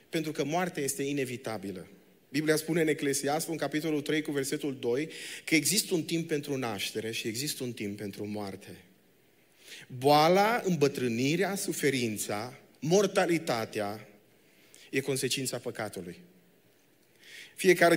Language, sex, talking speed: Romanian, male, 115 wpm